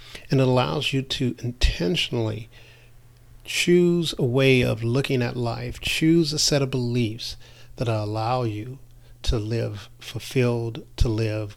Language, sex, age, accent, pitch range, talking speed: English, male, 40-59, American, 115-125 Hz, 135 wpm